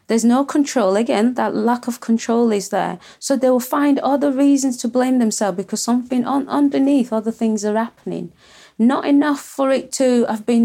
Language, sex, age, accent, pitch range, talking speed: English, female, 30-49, British, 205-250 Hz, 190 wpm